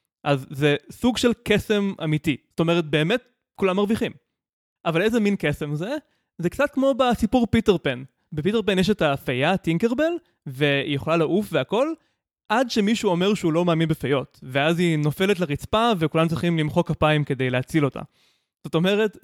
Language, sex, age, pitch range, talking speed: Hebrew, male, 20-39, 150-210 Hz, 160 wpm